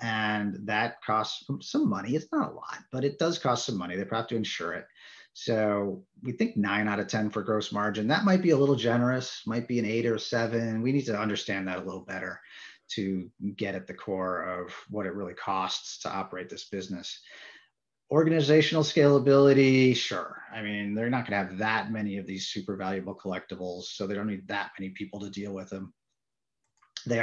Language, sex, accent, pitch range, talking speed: English, male, American, 100-125 Hz, 205 wpm